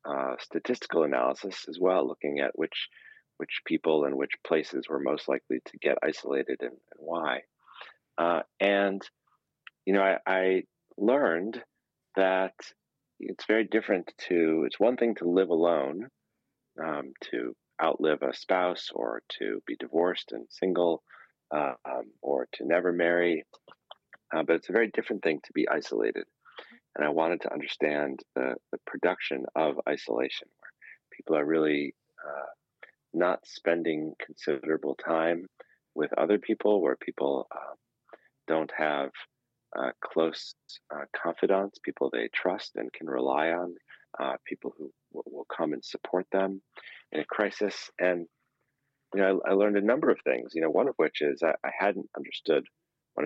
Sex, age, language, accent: male, 40-59, French, American